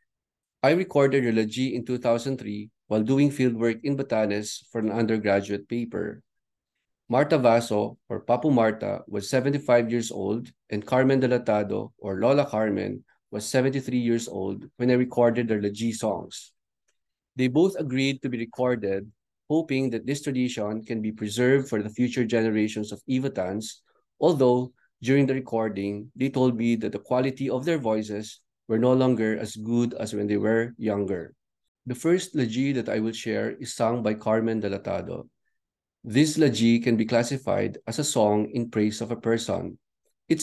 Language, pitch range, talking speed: English, 110-130 Hz, 160 wpm